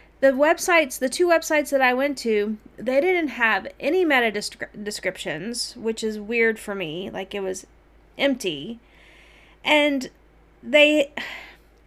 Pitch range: 215-270 Hz